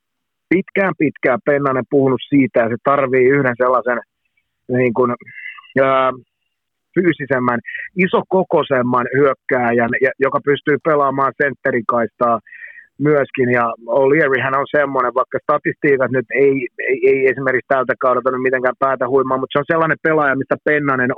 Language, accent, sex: Finnish, native, male